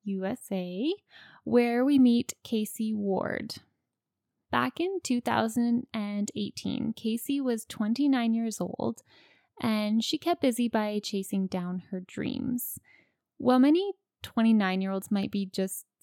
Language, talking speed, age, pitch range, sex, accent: English, 110 wpm, 20-39, 200-250 Hz, female, American